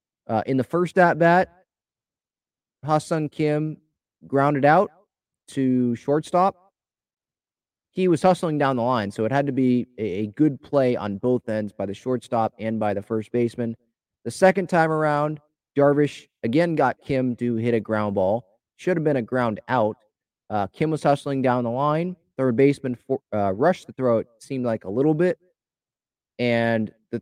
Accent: American